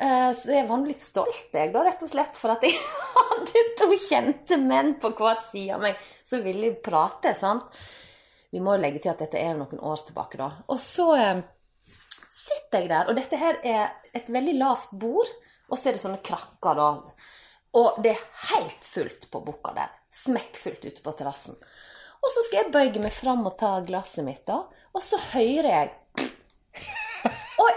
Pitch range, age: 215-360 Hz, 30-49